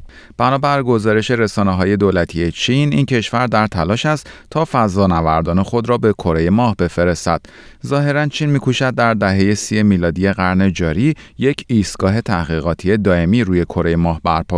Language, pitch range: Persian, 85-120 Hz